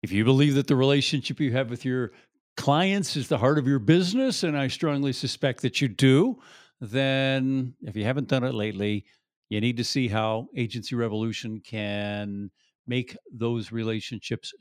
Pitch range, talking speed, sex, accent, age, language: 115-145 Hz, 175 wpm, male, American, 50-69, English